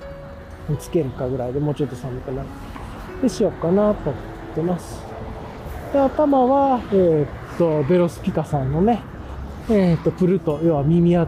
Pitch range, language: 150-225 Hz, Japanese